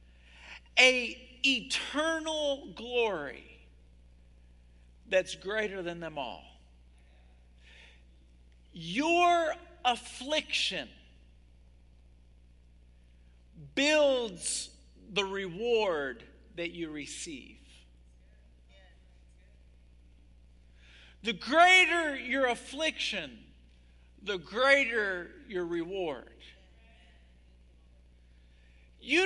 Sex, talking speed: male, 50 wpm